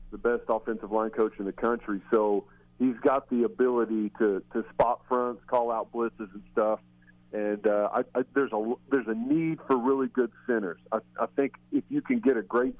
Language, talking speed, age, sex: English, 205 wpm, 40-59, male